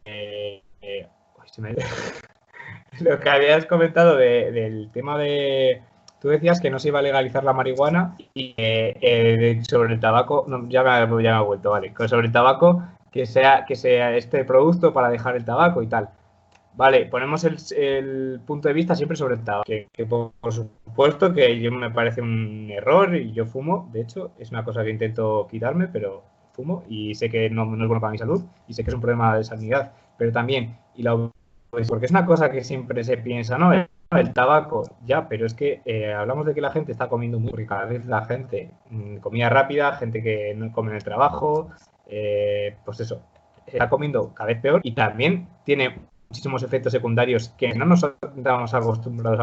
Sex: male